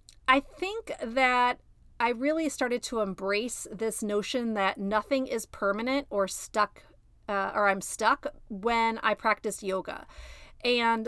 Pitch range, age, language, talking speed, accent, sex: 215-275 Hz, 30-49, English, 135 wpm, American, female